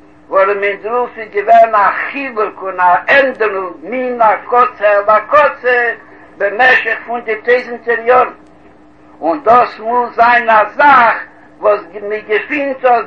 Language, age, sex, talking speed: Hebrew, 60-79, male, 100 wpm